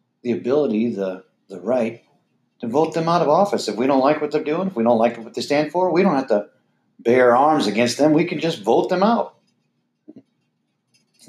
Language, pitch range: English, 115-145 Hz